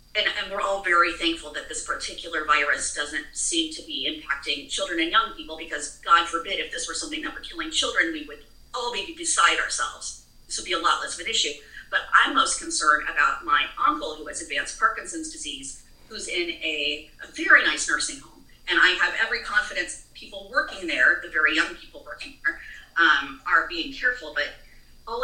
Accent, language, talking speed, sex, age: American, English, 200 wpm, female, 40-59